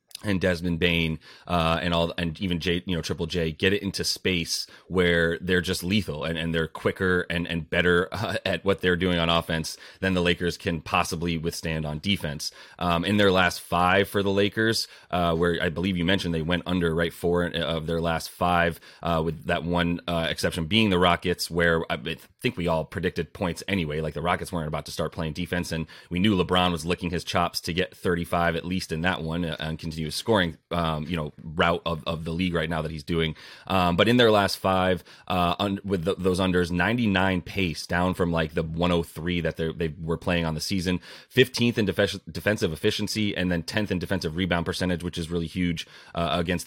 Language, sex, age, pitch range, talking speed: English, male, 30-49, 85-90 Hz, 210 wpm